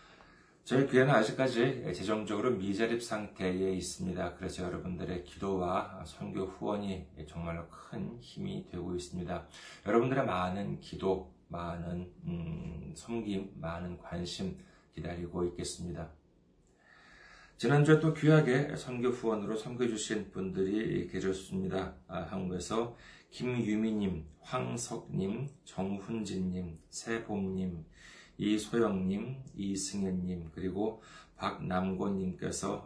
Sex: male